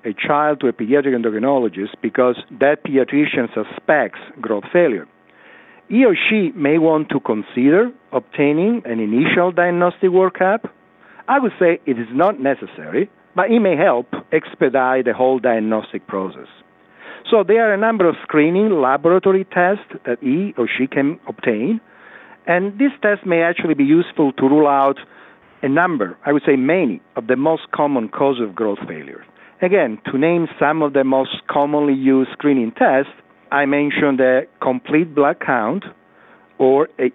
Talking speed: 160 wpm